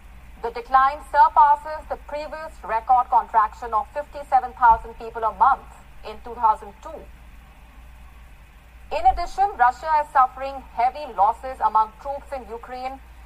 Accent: Indian